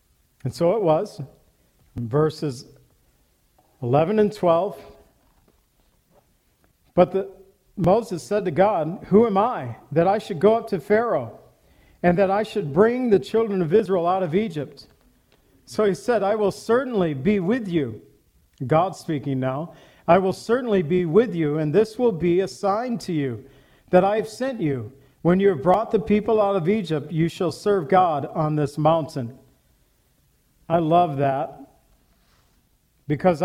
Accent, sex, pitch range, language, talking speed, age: American, male, 150-200 Hz, English, 155 wpm, 50-69